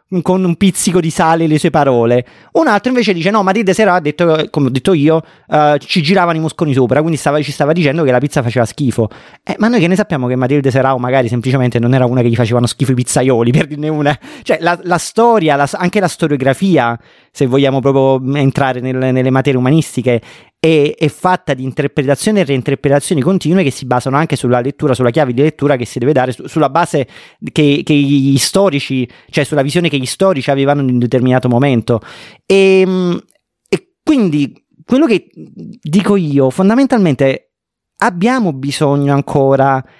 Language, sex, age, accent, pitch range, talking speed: Italian, male, 30-49, native, 135-175 Hz, 185 wpm